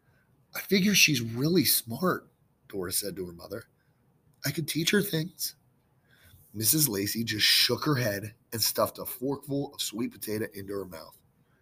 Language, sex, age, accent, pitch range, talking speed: English, male, 30-49, American, 100-140 Hz, 160 wpm